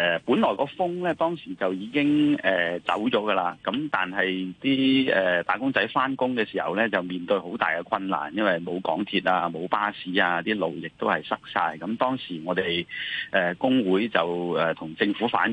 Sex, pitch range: male, 90-130 Hz